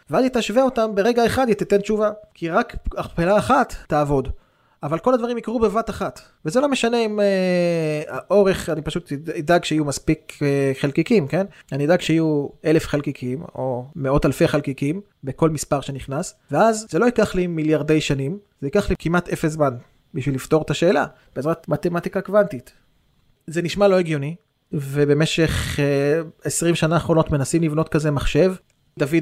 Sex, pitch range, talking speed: male, 145-175 Hz, 155 wpm